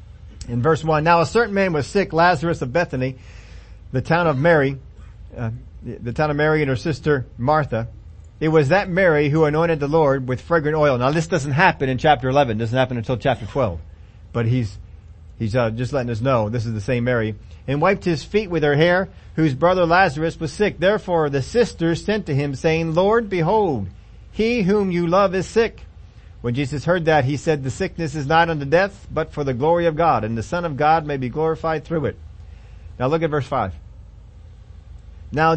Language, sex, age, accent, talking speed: English, male, 40-59, American, 205 wpm